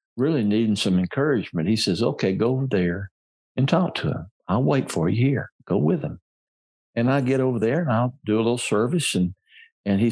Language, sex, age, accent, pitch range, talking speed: English, male, 60-79, American, 100-130 Hz, 215 wpm